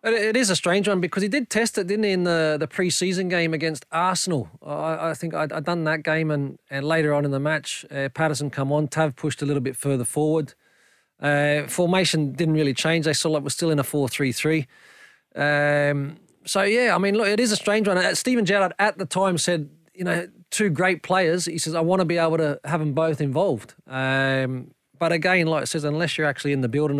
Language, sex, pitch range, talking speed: English, male, 140-175 Hz, 235 wpm